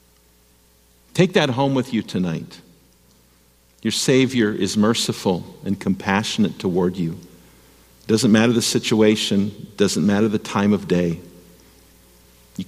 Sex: male